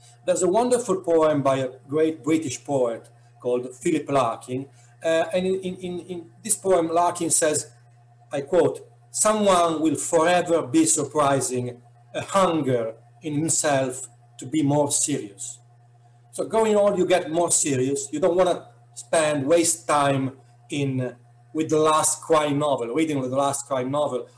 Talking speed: 155 wpm